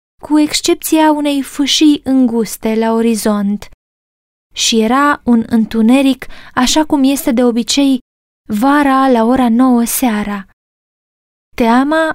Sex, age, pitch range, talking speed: female, 20-39, 230-280 Hz, 110 wpm